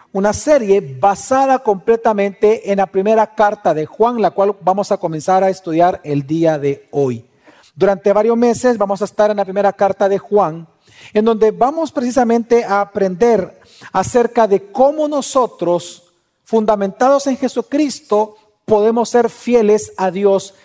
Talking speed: 150 wpm